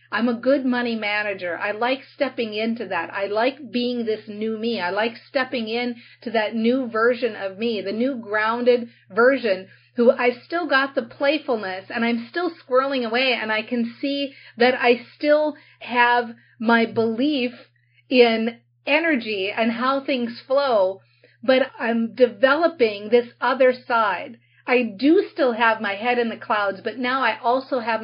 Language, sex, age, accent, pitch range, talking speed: English, female, 40-59, American, 215-255 Hz, 165 wpm